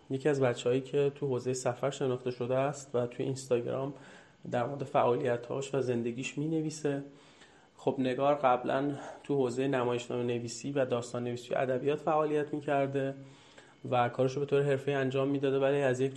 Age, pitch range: 30-49, 125-150 Hz